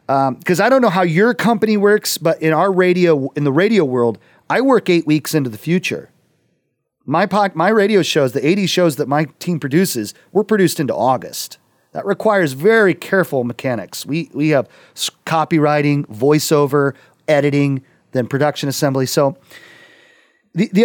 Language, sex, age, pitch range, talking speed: English, male, 40-59, 145-190 Hz, 165 wpm